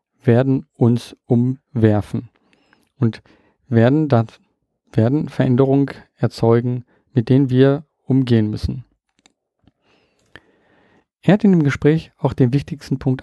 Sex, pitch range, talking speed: male, 120-150 Hz, 100 wpm